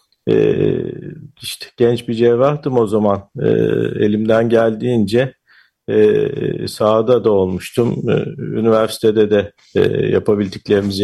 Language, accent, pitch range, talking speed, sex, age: Turkish, native, 110-140 Hz, 75 wpm, male, 50-69